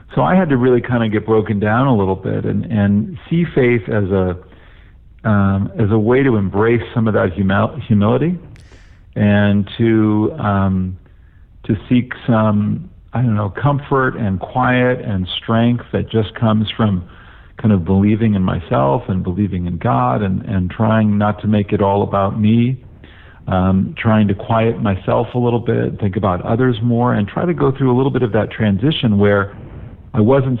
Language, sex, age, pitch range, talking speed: English, male, 50-69, 95-115 Hz, 180 wpm